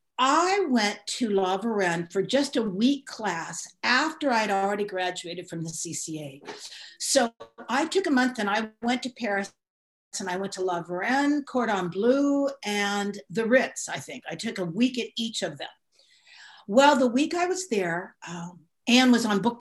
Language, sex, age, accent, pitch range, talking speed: English, female, 50-69, American, 200-255 Hz, 180 wpm